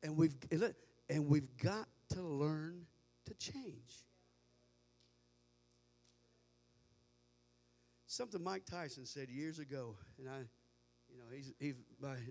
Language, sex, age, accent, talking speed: English, male, 50-69, American, 105 wpm